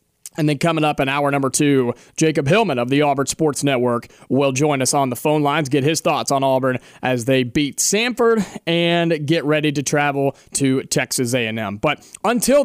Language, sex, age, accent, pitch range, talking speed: English, male, 30-49, American, 145-195 Hz, 195 wpm